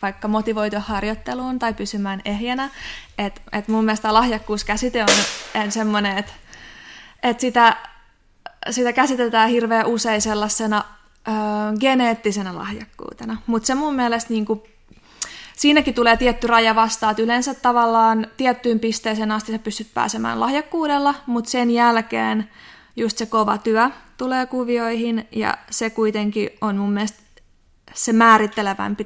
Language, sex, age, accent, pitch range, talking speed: Finnish, female, 20-39, native, 215-235 Hz, 130 wpm